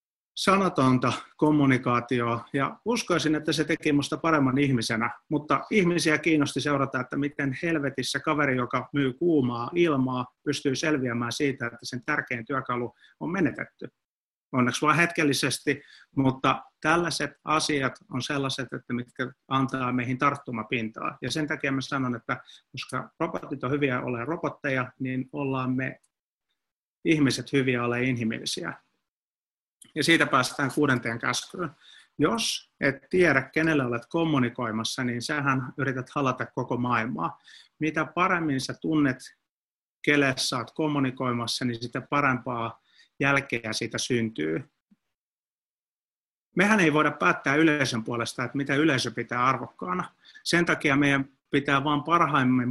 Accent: native